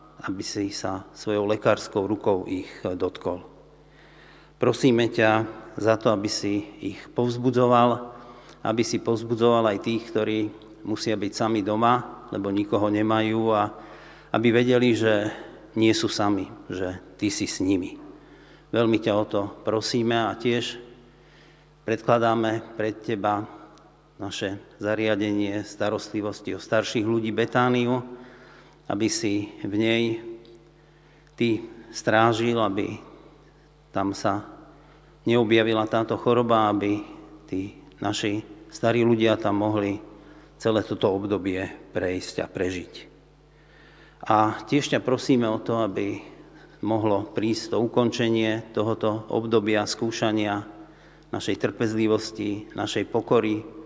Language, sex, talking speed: Slovak, male, 110 wpm